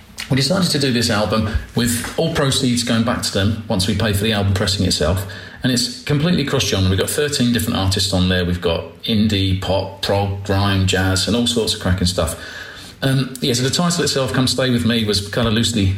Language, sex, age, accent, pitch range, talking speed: English, male, 40-59, British, 95-125 Hz, 220 wpm